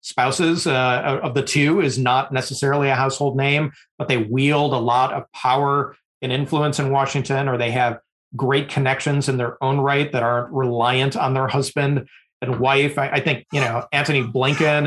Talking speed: 180 wpm